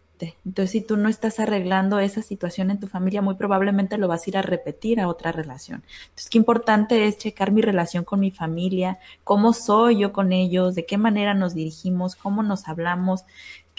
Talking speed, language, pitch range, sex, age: 195 wpm, Spanish, 175-220 Hz, female, 20-39